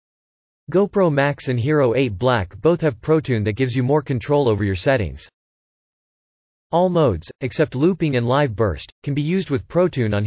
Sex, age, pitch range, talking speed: male, 40-59, 110-155 Hz, 175 wpm